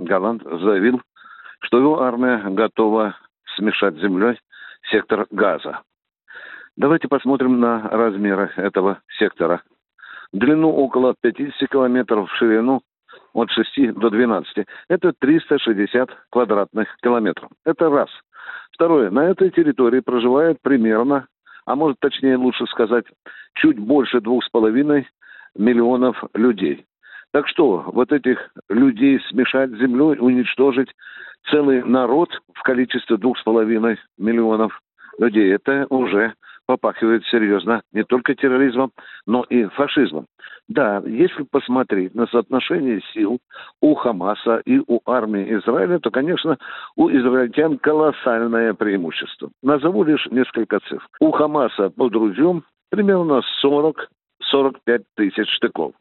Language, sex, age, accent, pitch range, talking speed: Russian, male, 60-79, native, 115-145 Hz, 110 wpm